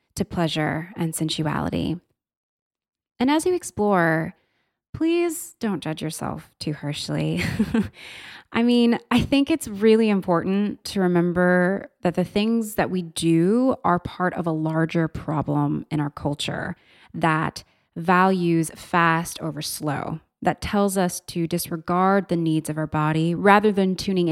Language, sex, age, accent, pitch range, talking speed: English, female, 20-39, American, 165-205 Hz, 135 wpm